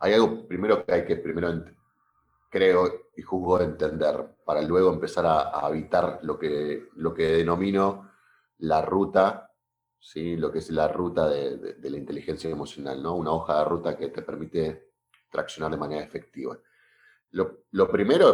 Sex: male